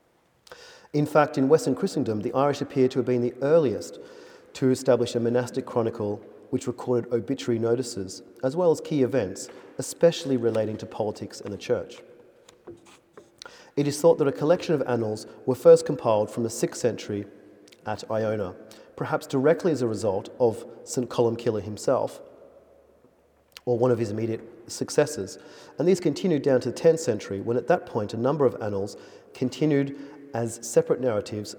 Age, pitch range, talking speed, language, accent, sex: 40-59, 115-150 Hz, 165 wpm, English, Australian, male